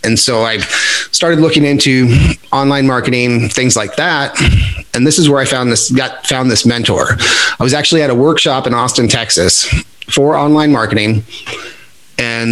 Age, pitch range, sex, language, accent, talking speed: 30-49, 125-155 Hz, male, English, American, 170 wpm